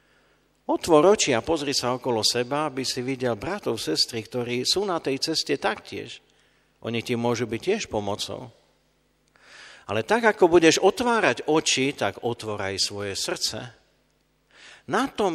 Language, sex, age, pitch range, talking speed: Slovak, male, 50-69, 105-150 Hz, 140 wpm